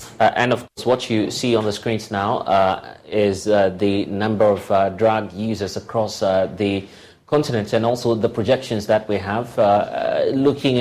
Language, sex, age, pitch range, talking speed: English, male, 30-49, 105-120 Hz, 190 wpm